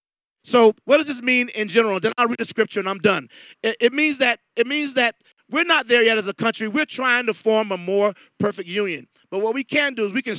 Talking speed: 260 wpm